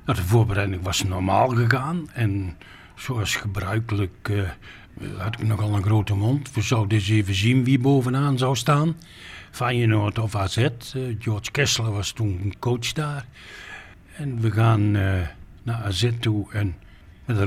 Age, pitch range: 60-79, 100-135 Hz